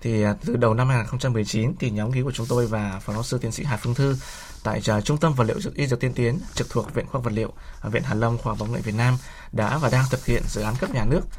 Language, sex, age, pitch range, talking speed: Vietnamese, male, 20-39, 115-140 Hz, 290 wpm